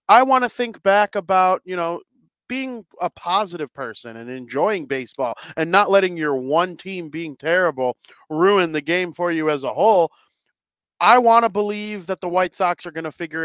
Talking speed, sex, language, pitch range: 190 wpm, male, English, 140-190 Hz